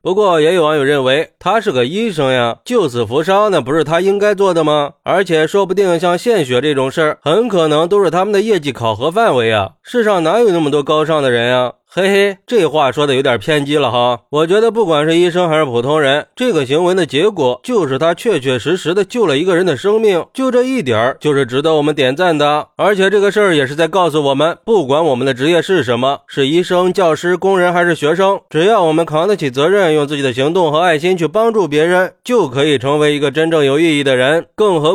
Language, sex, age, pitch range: Chinese, male, 20-39, 145-190 Hz